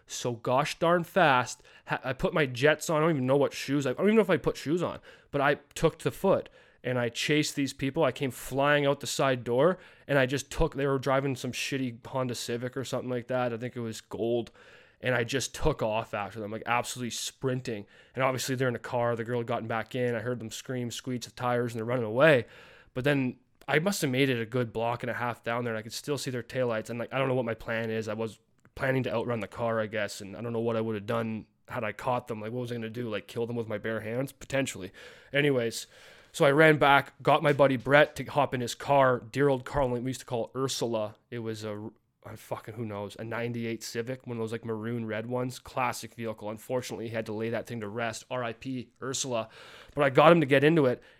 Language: English